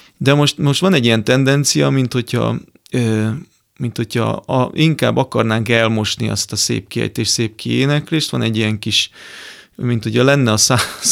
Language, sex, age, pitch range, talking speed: Hungarian, male, 30-49, 115-130 Hz, 160 wpm